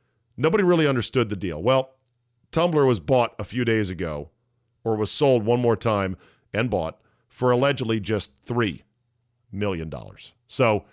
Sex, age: male, 40-59